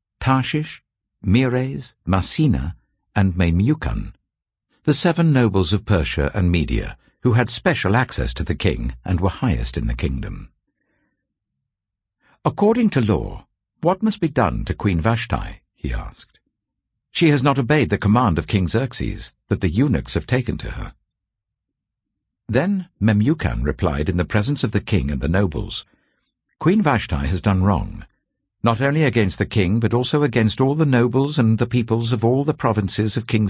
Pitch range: 100-135 Hz